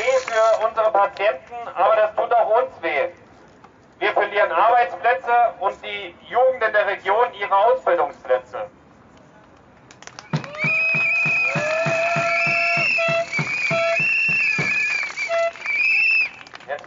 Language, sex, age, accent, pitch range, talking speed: German, male, 40-59, German, 175-230 Hz, 85 wpm